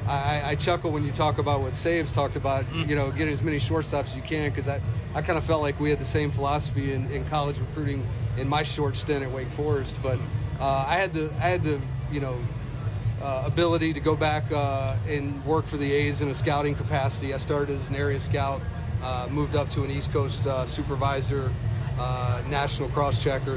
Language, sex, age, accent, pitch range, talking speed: English, male, 30-49, American, 120-145 Hz, 225 wpm